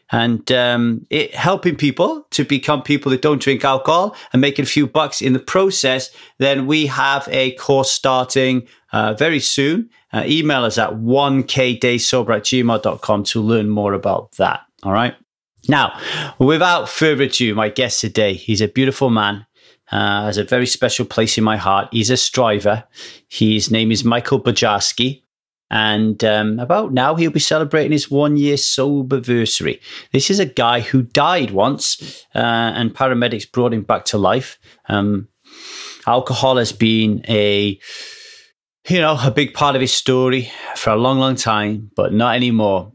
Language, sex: English, male